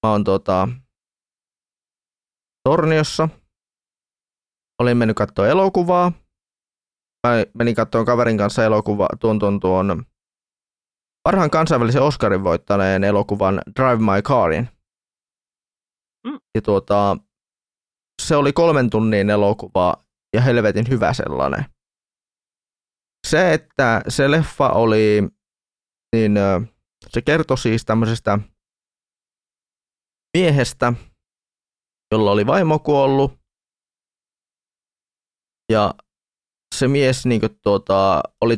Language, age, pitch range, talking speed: Finnish, 20-39, 100-125 Hz, 80 wpm